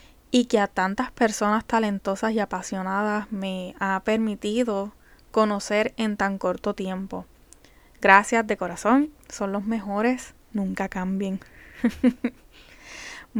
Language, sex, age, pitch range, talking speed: Spanish, female, 10-29, 200-245 Hz, 110 wpm